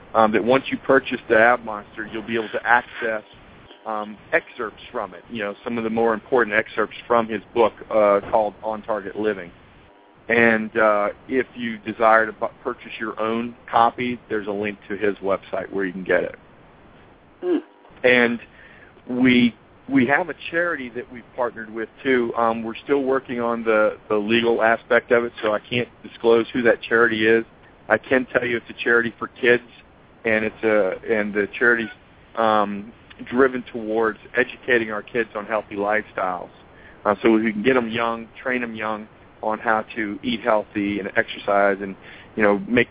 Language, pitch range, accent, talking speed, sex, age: English, 105-120 Hz, American, 180 wpm, male, 40-59